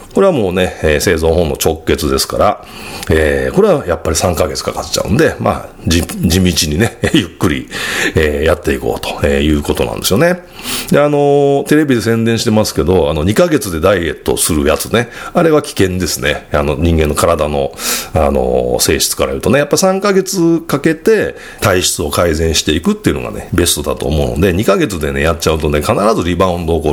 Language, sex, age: Japanese, male, 40-59